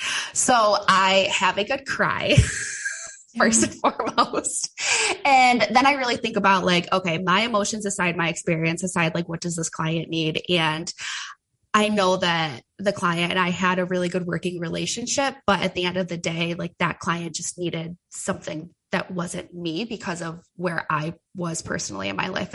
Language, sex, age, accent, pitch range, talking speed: English, female, 20-39, American, 170-200 Hz, 180 wpm